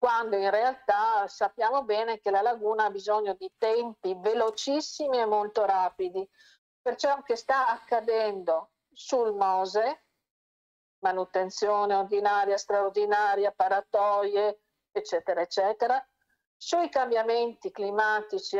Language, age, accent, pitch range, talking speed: Italian, 50-69, native, 200-270 Hz, 100 wpm